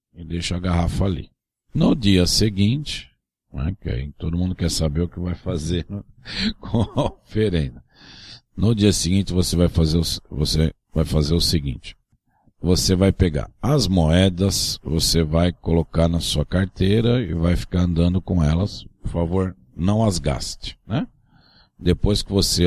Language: Portuguese